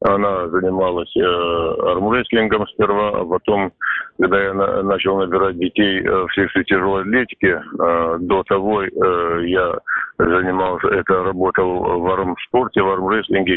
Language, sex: Russian, male